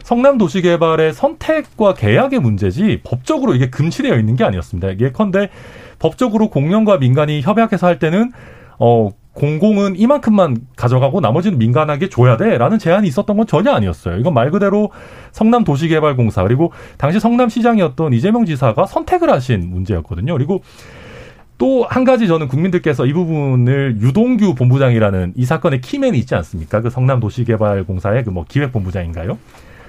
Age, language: 40-59, Korean